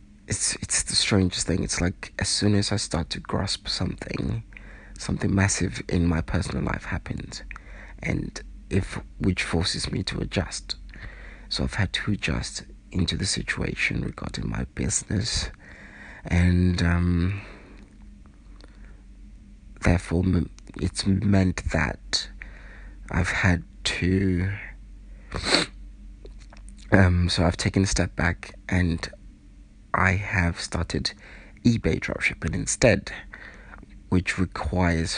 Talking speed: 110 wpm